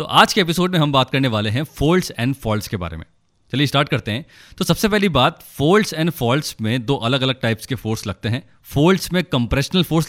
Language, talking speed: Hindi, 240 wpm